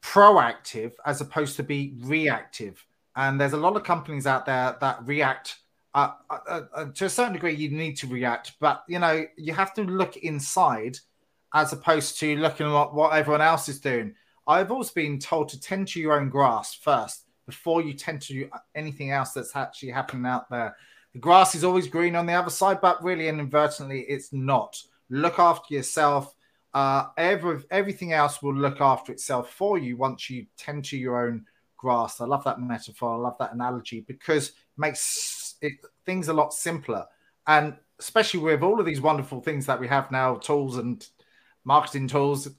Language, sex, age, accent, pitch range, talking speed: English, male, 30-49, British, 130-165 Hz, 190 wpm